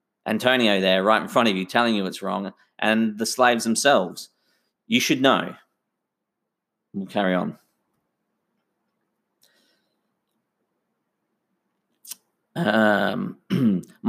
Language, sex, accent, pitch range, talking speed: English, male, Australian, 115-190 Hz, 95 wpm